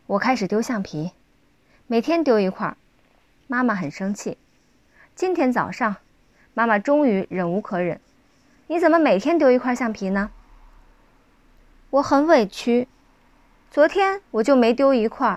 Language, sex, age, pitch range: Chinese, female, 20-39, 210-290 Hz